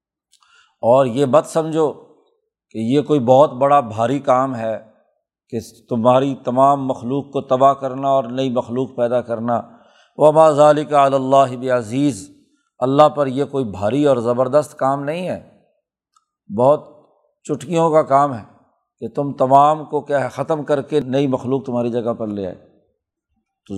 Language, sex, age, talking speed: Urdu, male, 50-69, 155 wpm